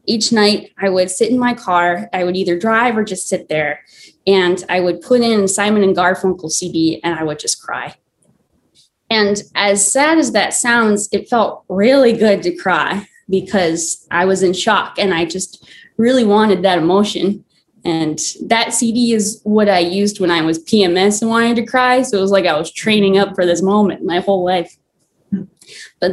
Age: 20-39